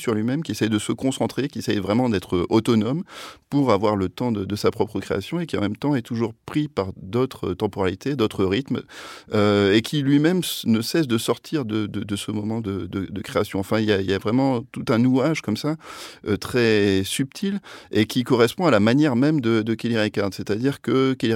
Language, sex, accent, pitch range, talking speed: French, male, French, 95-125 Hz, 230 wpm